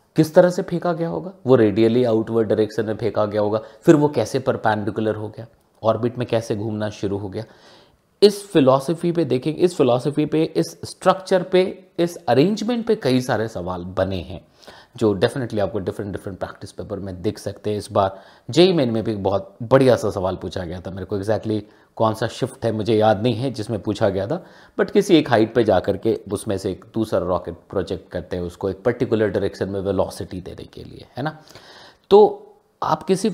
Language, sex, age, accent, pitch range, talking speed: Hindi, male, 30-49, native, 105-170 Hz, 205 wpm